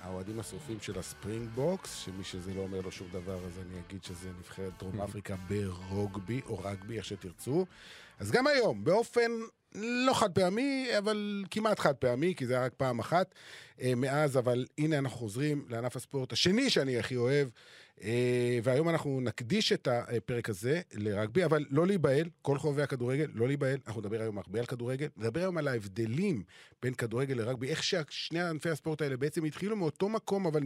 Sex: male